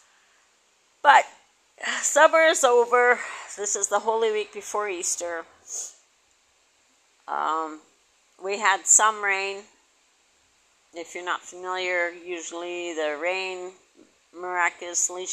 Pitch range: 170-210 Hz